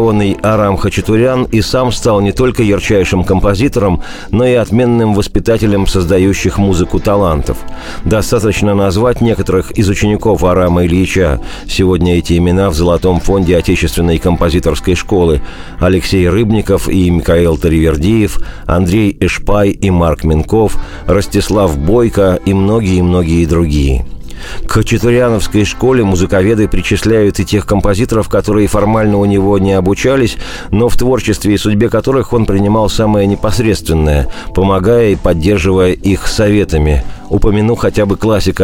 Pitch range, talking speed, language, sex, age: 90-105 Hz, 125 wpm, Russian, male, 50-69